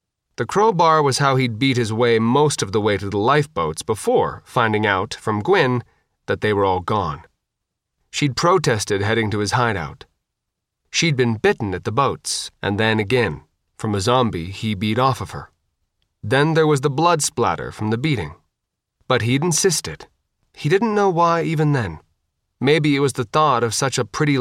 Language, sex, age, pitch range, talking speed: English, male, 30-49, 105-145 Hz, 185 wpm